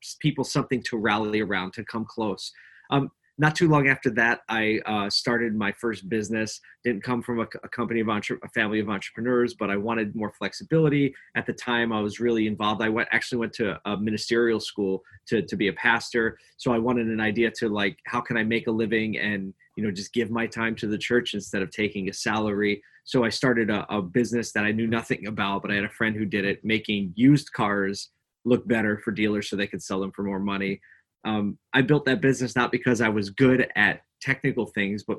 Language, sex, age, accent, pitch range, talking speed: English, male, 20-39, American, 105-120 Hz, 225 wpm